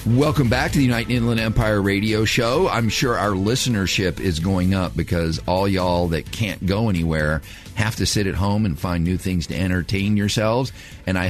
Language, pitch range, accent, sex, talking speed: English, 90-110 Hz, American, male, 195 wpm